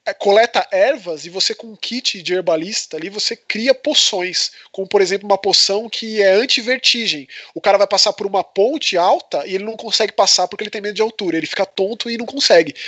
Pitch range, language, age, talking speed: 185-250 Hz, Portuguese, 20-39, 220 wpm